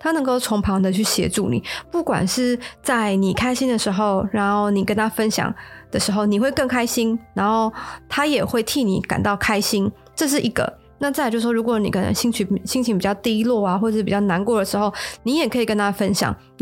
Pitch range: 200-240 Hz